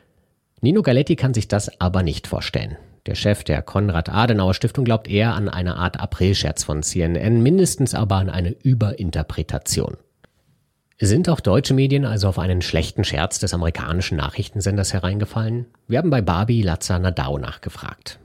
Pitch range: 90-125 Hz